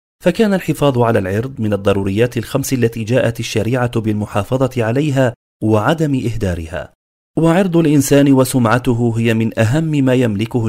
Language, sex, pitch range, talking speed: Arabic, male, 110-140 Hz, 125 wpm